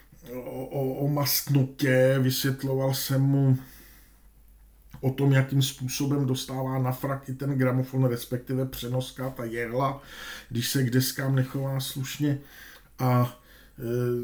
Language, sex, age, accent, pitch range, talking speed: Czech, male, 50-69, native, 130-145 Hz, 120 wpm